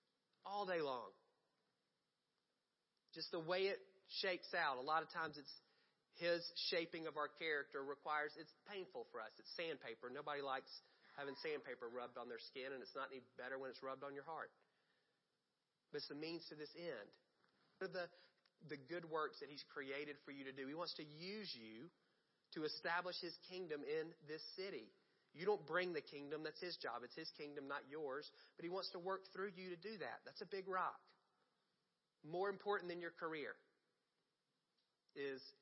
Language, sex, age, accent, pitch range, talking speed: English, male, 40-59, American, 150-200 Hz, 180 wpm